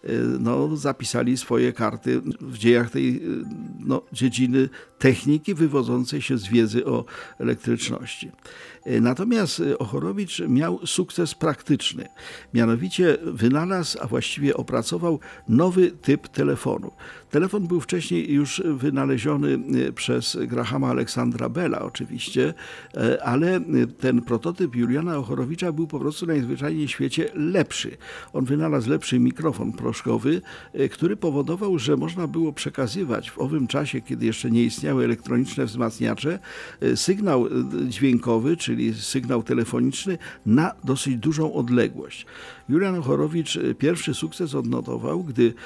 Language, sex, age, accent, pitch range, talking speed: Polish, male, 50-69, native, 120-165 Hz, 115 wpm